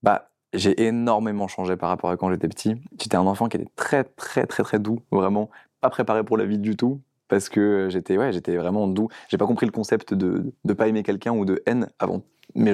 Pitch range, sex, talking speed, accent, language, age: 90-105 Hz, male, 235 wpm, French, French, 20-39